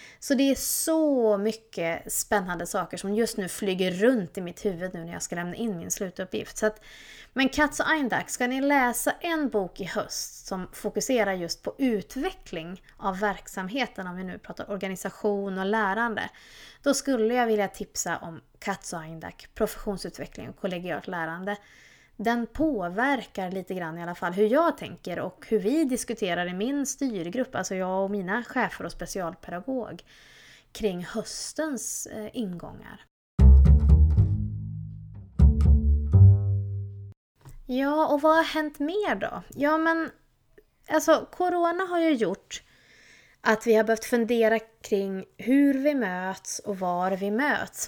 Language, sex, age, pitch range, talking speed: Swedish, female, 20-39, 185-255 Hz, 145 wpm